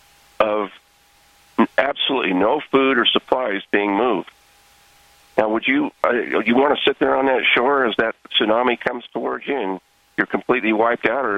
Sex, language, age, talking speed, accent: male, English, 50-69, 170 wpm, American